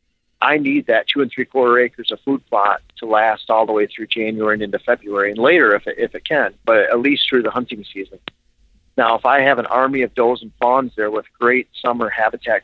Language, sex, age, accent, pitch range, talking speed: English, male, 50-69, American, 110-125 Hz, 235 wpm